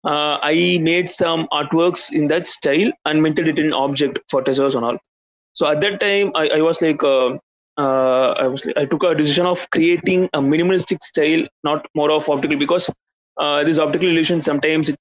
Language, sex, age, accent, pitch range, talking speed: English, male, 20-39, Indian, 135-170 Hz, 200 wpm